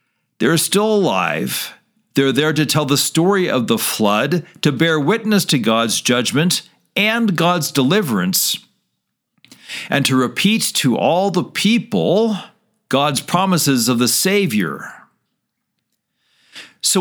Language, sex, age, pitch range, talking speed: English, male, 50-69, 135-190 Hz, 120 wpm